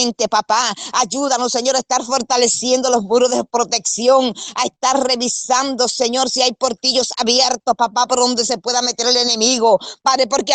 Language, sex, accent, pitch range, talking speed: Spanish, female, American, 225-255 Hz, 160 wpm